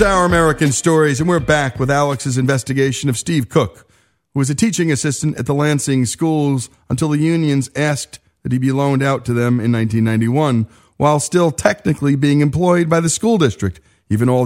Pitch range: 110-145 Hz